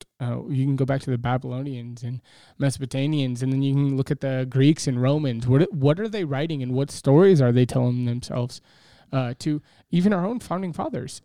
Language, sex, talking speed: English, male, 210 wpm